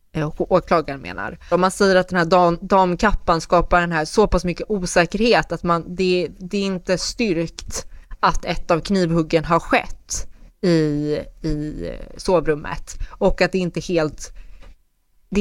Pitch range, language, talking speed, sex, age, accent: 155-185 Hz, Swedish, 155 wpm, female, 20-39, native